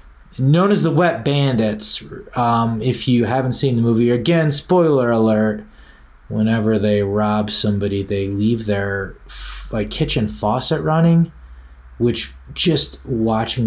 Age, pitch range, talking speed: 30-49, 100-125 Hz, 125 wpm